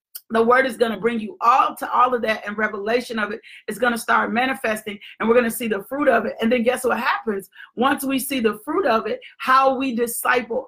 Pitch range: 220-265 Hz